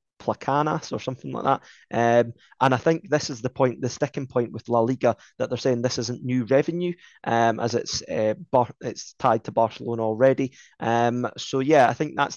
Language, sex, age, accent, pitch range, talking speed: English, male, 20-39, British, 115-140 Hz, 205 wpm